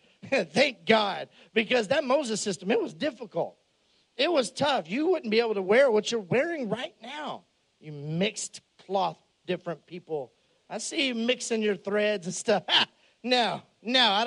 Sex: male